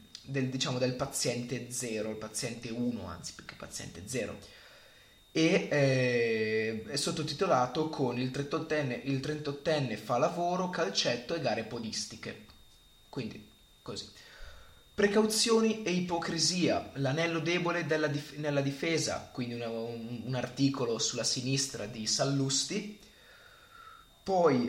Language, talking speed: Italian, 105 wpm